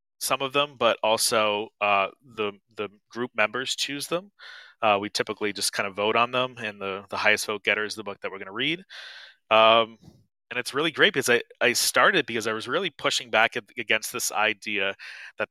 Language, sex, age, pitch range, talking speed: English, male, 30-49, 100-115 Hz, 210 wpm